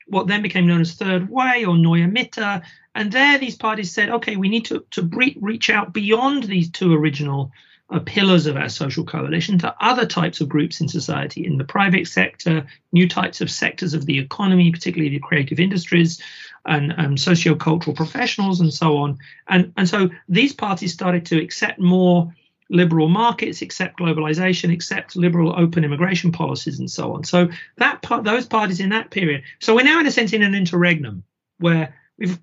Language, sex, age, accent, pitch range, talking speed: English, male, 40-59, British, 160-205 Hz, 185 wpm